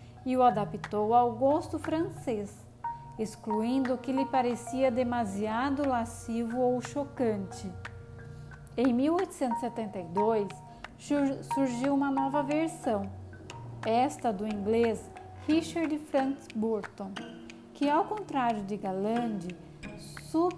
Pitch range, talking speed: 220-295 Hz, 95 wpm